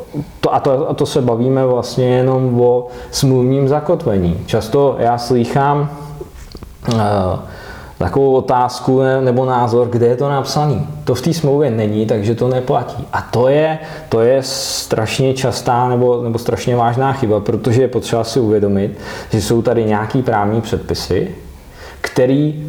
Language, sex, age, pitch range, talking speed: Czech, male, 20-39, 110-135 Hz, 150 wpm